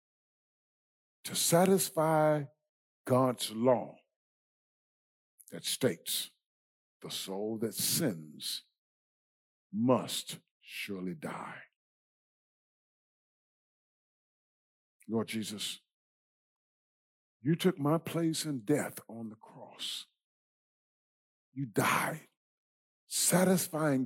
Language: English